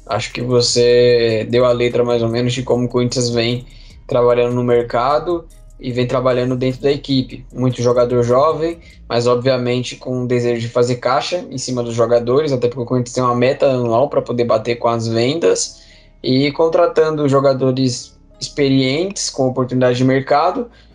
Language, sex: Portuguese, male